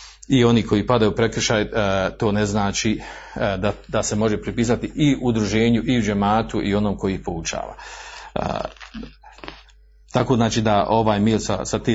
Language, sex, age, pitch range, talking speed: Croatian, male, 40-59, 105-120 Hz, 155 wpm